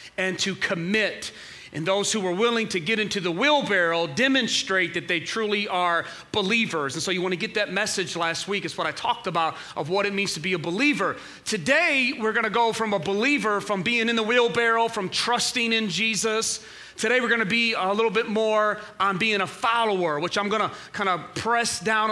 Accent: American